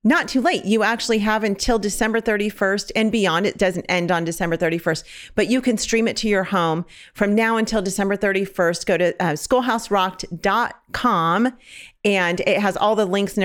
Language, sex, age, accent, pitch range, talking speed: English, female, 40-59, American, 175-220 Hz, 185 wpm